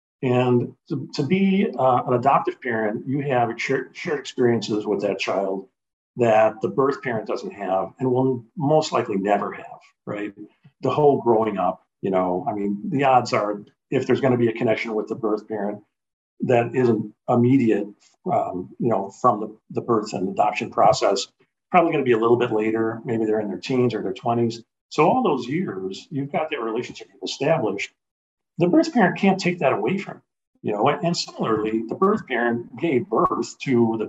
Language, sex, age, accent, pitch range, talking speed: English, male, 50-69, American, 115-170 Hz, 190 wpm